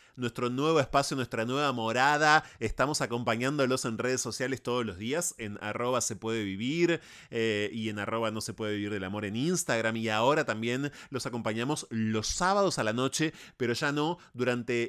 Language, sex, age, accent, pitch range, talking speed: Spanish, male, 30-49, Argentinian, 115-155 Hz, 180 wpm